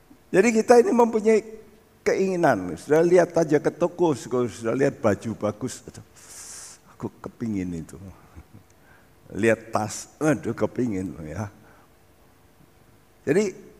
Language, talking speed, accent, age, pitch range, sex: Indonesian, 100 wpm, native, 60-79, 115-180 Hz, male